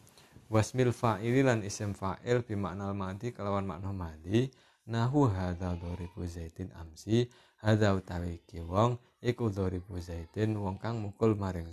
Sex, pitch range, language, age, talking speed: male, 90-110 Hz, Indonesian, 20-39, 130 wpm